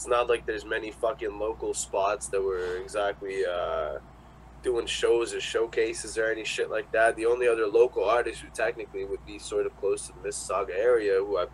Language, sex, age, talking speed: English, male, 20-39, 205 wpm